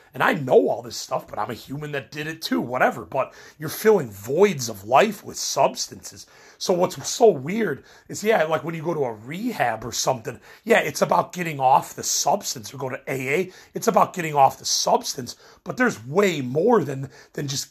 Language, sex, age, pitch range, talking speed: English, male, 30-49, 130-200 Hz, 210 wpm